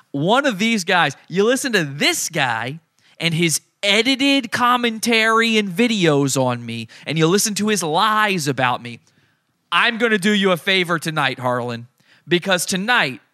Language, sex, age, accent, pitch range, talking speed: English, male, 20-39, American, 130-185 Hz, 155 wpm